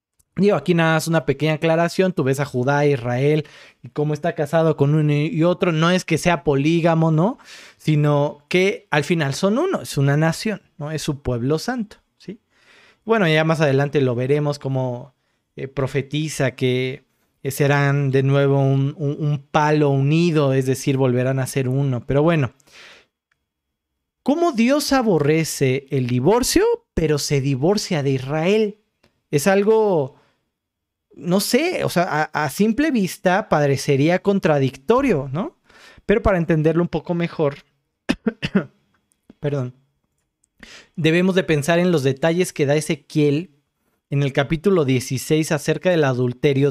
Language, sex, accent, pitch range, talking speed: Spanish, male, Mexican, 140-170 Hz, 145 wpm